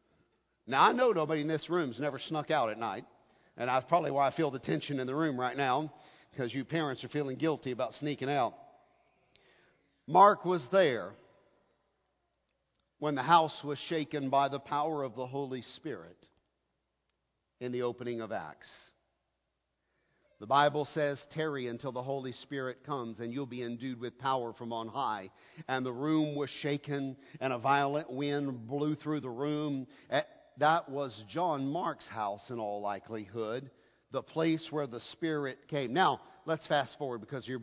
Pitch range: 130-155 Hz